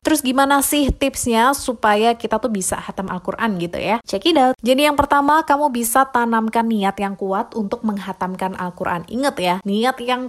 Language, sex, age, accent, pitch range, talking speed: Indonesian, female, 20-39, native, 180-235 Hz, 180 wpm